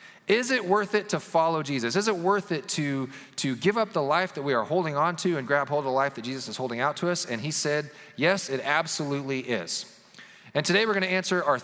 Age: 30-49